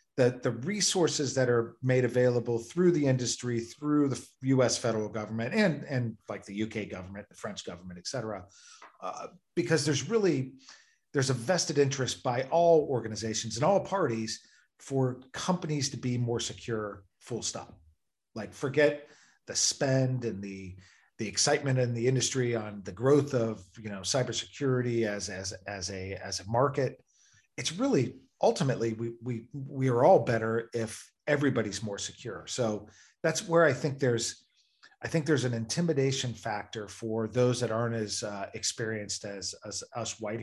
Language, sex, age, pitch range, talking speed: English, male, 40-59, 110-140 Hz, 165 wpm